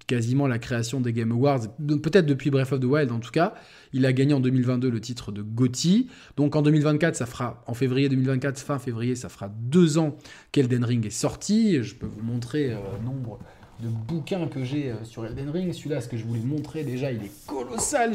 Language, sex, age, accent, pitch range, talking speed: French, male, 20-39, French, 115-150 Hz, 225 wpm